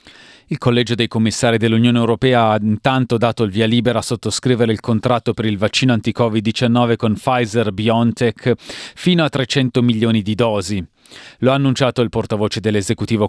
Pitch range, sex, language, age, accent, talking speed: 115-135 Hz, male, Italian, 30-49, native, 165 wpm